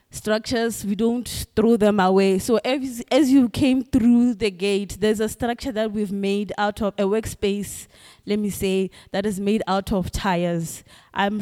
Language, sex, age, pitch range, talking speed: English, female, 20-39, 195-240 Hz, 180 wpm